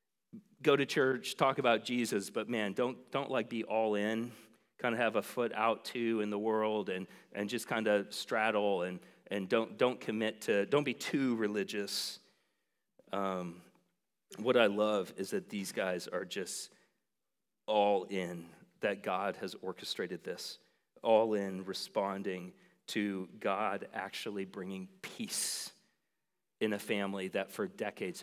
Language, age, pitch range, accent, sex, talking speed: English, 40-59, 100-120 Hz, American, male, 150 wpm